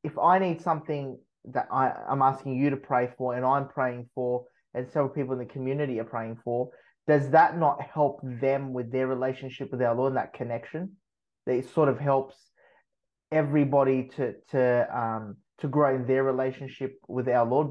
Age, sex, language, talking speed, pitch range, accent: 20-39, male, English, 190 wpm, 125-145 Hz, Australian